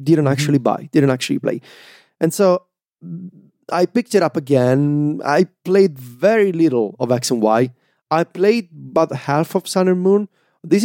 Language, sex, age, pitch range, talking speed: English, male, 30-49, 135-185 Hz, 165 wpm